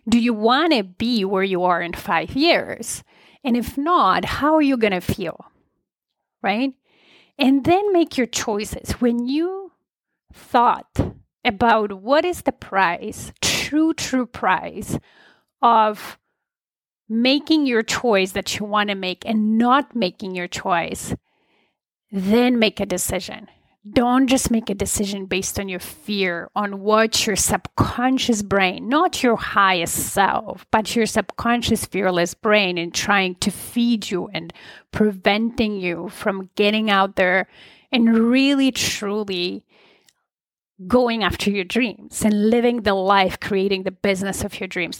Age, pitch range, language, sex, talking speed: 30-49, 195-245 Hz, English, female, 145 wpm